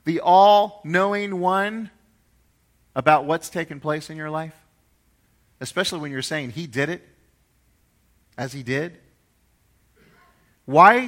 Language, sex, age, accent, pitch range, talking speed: English, male, 40-59, American, 130-220 Hz, 115 wpm